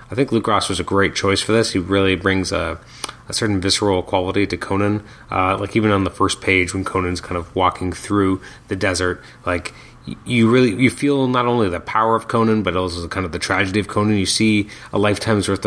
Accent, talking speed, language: American, 225 wpm, English